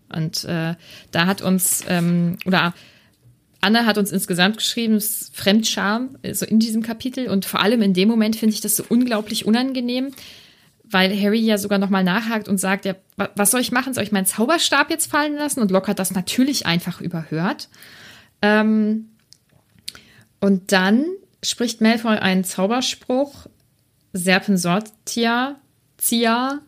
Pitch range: 190-235 Hz